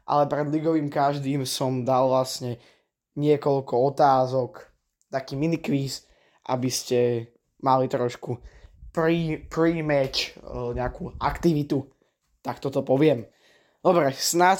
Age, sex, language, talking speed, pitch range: 20-39, male, Slovak, 100 wpm, 130-155 Hz